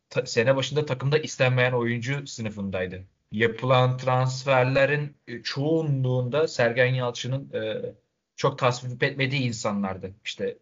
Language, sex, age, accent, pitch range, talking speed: Turkish, male, 30-49, native, 115-135 Hz, 90 wpm